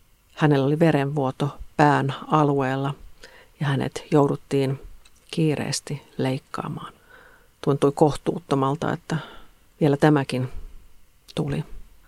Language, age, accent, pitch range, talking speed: Finnish, 50-69, native, 135-150 Hz, 80 wpm